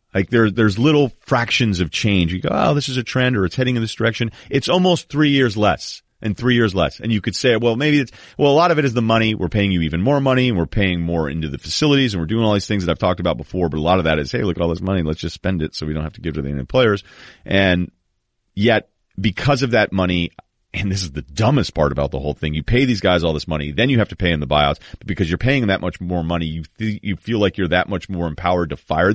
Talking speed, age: 300 wpm, 30-49